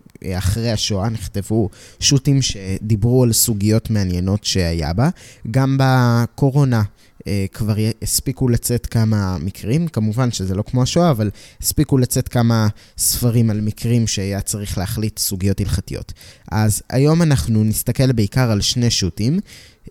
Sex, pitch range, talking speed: male, 100-125 Hz, 125 wpm